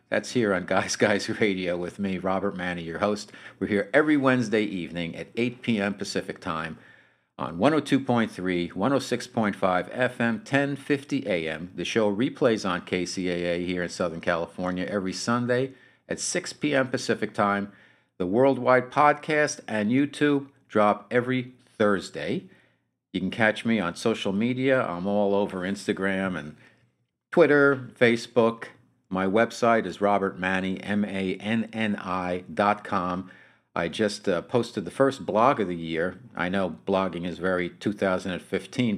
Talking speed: 130 wpm